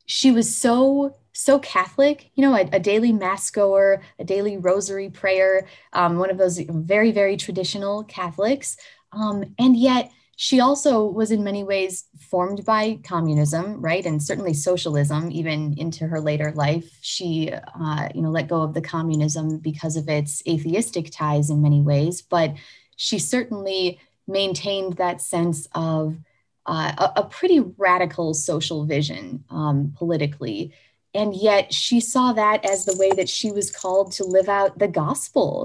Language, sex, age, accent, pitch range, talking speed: English, female, 20-39, American, 155-200 Hz, 160 wpm